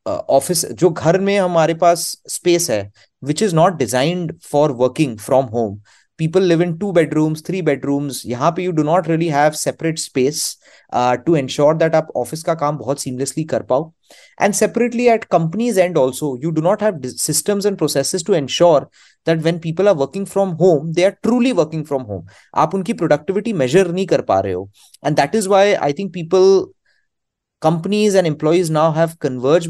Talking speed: 170 wpm